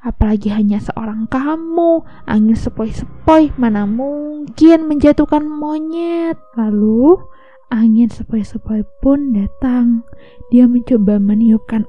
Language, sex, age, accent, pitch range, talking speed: Indonesian, female, 20-39, native, 220-285 Hz, 90 wpm